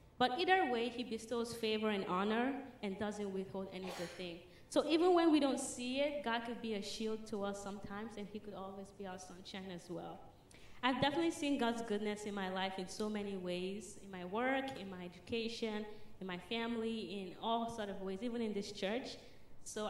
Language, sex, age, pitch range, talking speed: English, female, 20-39, 195-245 Hz, 210 wpm